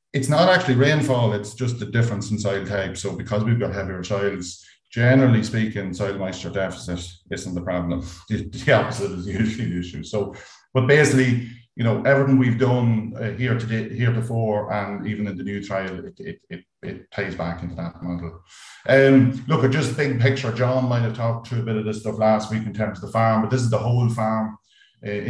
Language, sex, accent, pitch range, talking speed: English, male, Irish, 95-120 Hz, 210 wpm